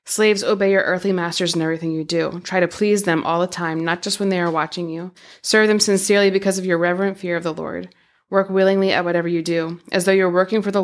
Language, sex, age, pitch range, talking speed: English, female, 20-39, 170-195 Hz, 255 wpm